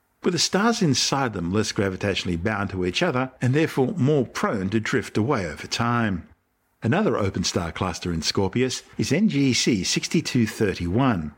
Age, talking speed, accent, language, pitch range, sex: 50-69, 155 wpm, Australian, English, 95-125 Hz, male